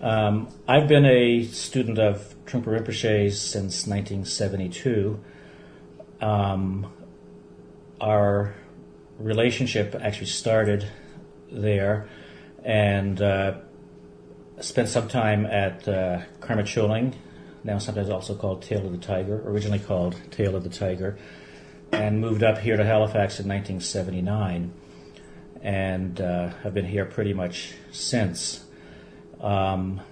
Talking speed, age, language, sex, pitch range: 110 wpm, 40-59, English, male, 95-110 Hz